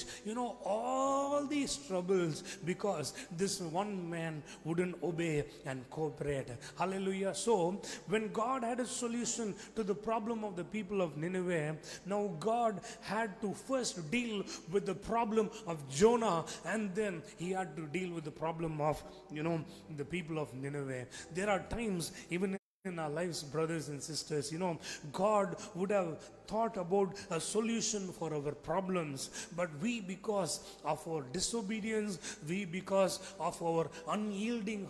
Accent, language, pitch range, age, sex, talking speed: Indian, English, 165-210 Hz, 30-49, male, 150 wpm